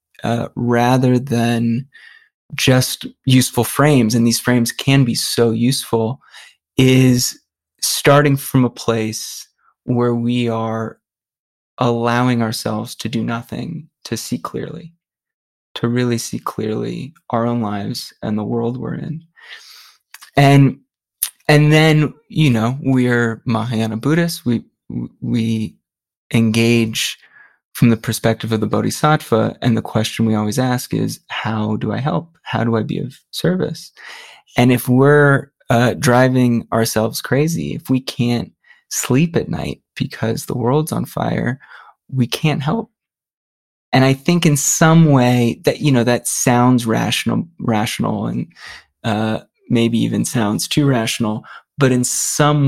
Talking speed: 135 wpm